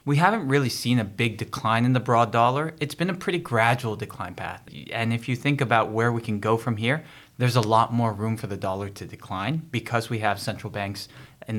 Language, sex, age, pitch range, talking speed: English, male, 20-39, 105-125 Hz, 235 wpm